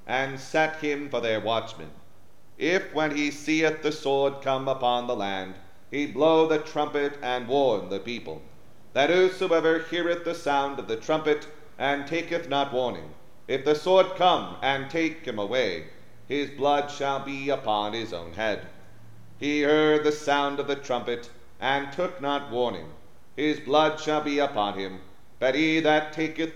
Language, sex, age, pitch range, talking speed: English, male, 40-59, 120-160 Hz, 165 wpm